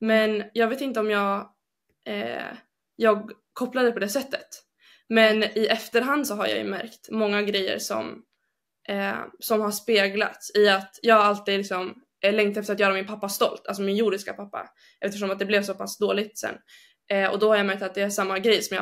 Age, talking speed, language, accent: 20-39, 205 wpm, Swedish, native